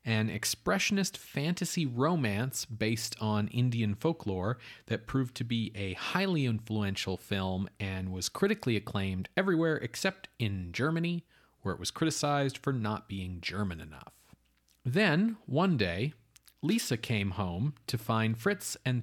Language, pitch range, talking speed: English, 100-135 Hz, 135 wpm